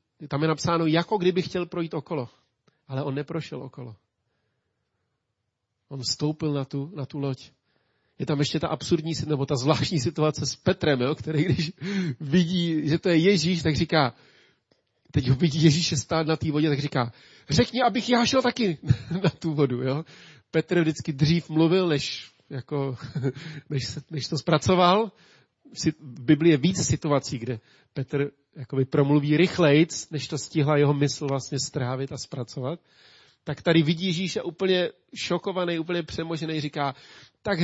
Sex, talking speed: male, 160 wpm